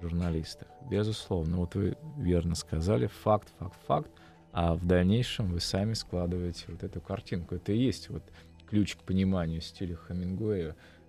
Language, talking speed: Russian, 145 wpm